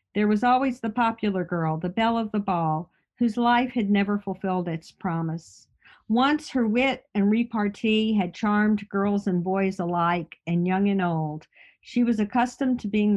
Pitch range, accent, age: 180-225 Hz, American, 50-69